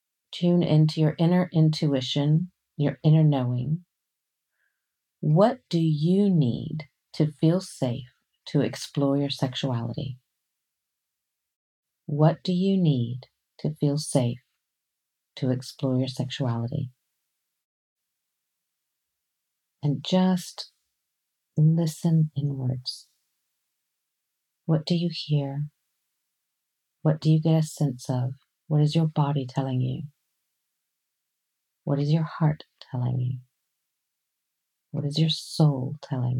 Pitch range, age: 135-160 Hz, 50-69